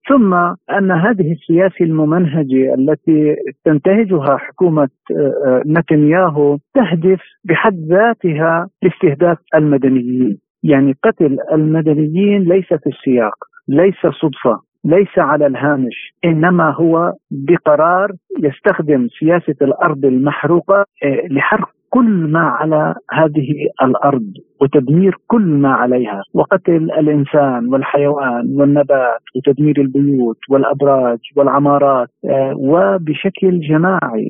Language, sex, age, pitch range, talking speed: Arabic, male, 50-69, 145-185 Hz, 90 wpm